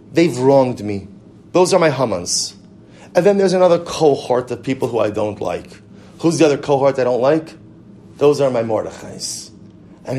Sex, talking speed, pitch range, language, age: male, 175 wpm, 130-165 Hz, English, 30-49